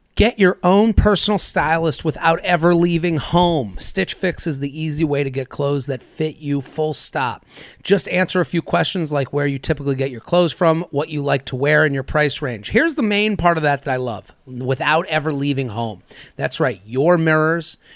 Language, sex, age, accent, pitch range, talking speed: English, male, 30-49, American, 140-180 Hz, 205 wpm